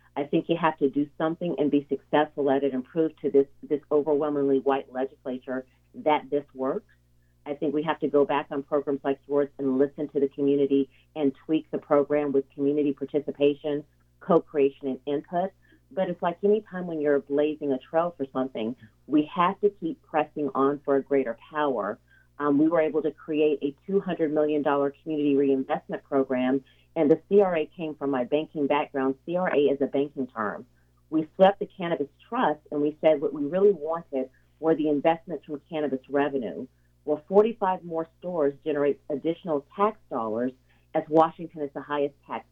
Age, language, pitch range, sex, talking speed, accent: 40-59, English, 135-160 Hz, female, 180 wpm, American